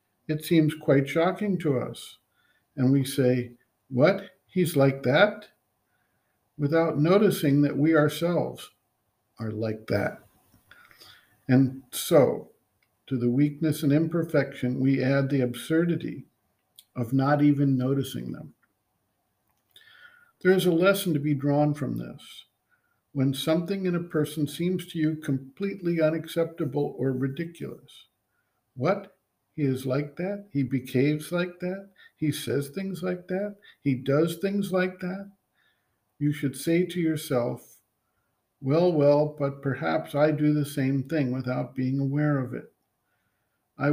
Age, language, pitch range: 50-69, English, 135-170 Hz